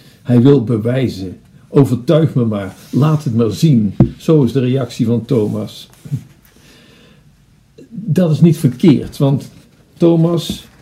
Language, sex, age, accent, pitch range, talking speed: Dutch, male, 60-79, Dutch, 120-150 Hz, 120 wpm